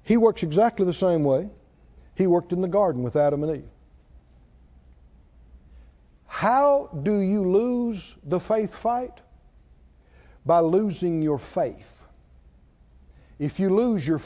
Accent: American